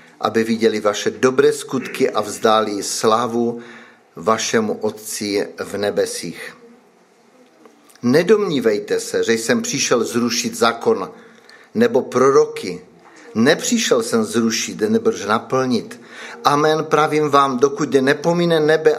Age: 50-69